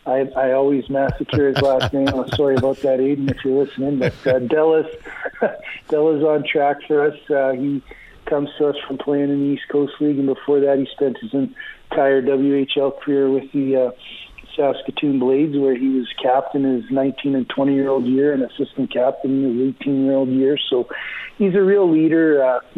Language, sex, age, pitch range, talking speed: English, male, 50-69, 135-150 Hz, 185 wpm